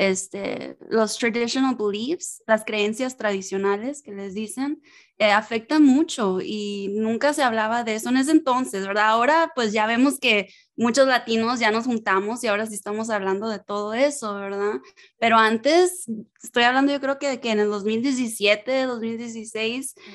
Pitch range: 205-255 Hz